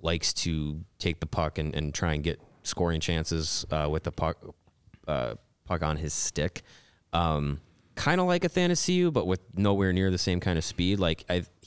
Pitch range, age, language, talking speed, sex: 85-110 Hz, 20-39, English, 195 wpm, male